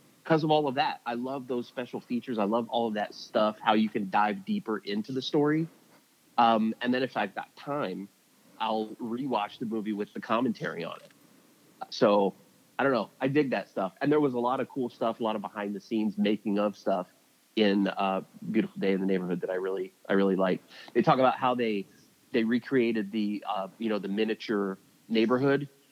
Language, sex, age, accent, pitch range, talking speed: English, male, 30-49, American, 100-115 Hz, 215 wpm